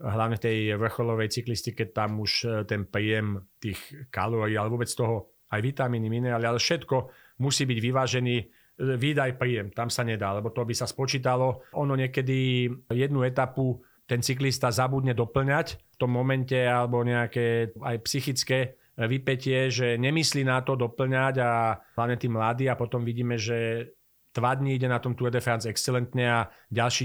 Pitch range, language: 115-130 Hz, Slovak